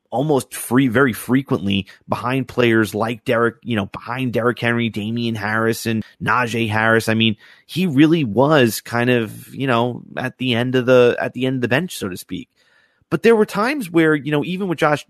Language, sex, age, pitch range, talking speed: English, male, 30-49, 115-155 Hz, 200 wpm